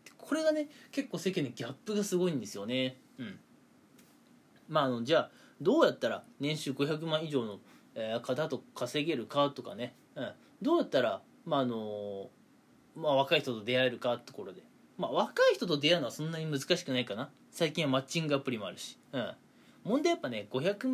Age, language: 20-39, Japanese